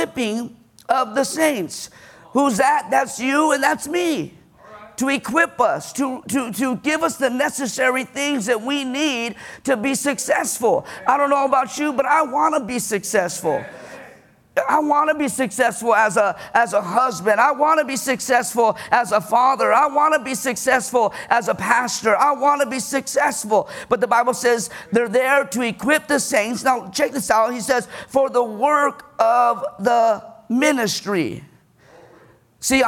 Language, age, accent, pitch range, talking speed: English, 50-69, American, 235-285 Hz, 165 wpm